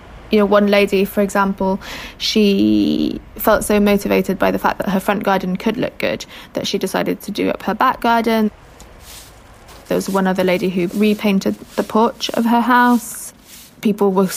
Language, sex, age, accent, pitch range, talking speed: English, female, 20-39, British, 195-230 Hz, 180 wpm